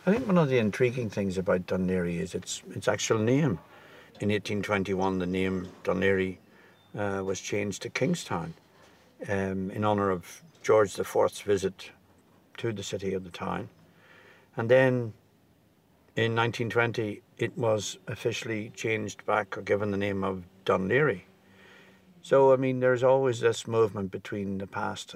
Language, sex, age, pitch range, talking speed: English, male, 60-79, 95-110 Hz, 155 wpm